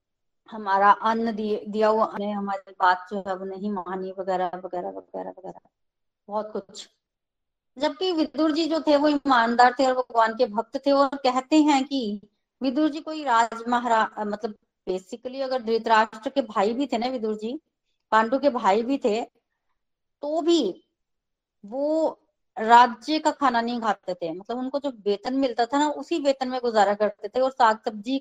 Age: 20-39